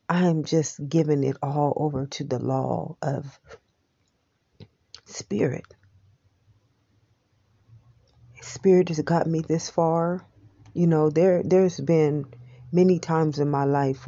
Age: 40-59